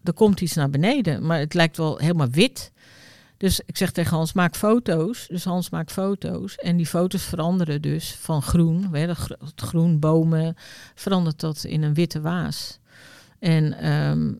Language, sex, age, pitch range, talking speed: Dutch, female, 50-69, 145-175 Hz, 165 wpm